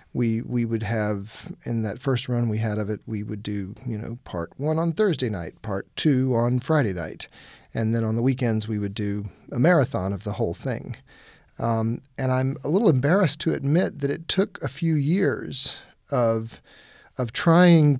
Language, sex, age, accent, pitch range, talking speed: English, male, 40-59, American, 115-140 Hz, 195 wpm